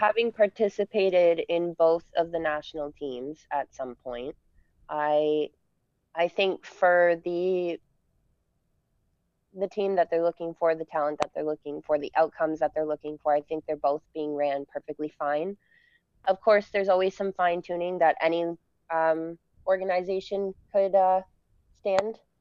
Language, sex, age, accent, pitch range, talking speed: English, female, 20-39, American, 150-190 Hz, 150 wpm